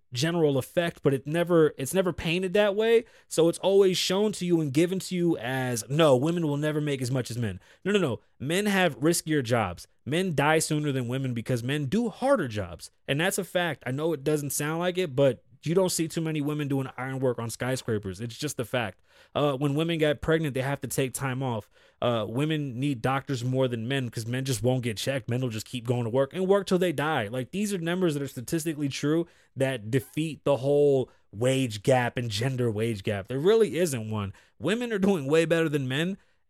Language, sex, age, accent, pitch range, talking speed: English, male, 20-39, American, 125-170 Hz, 230 wpm